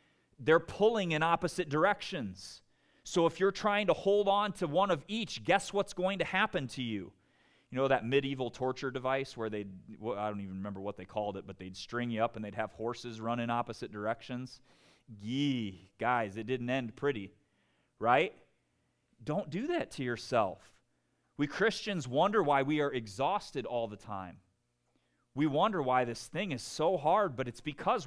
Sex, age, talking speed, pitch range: male, 30-49, 180 wpm, 115-180 Hz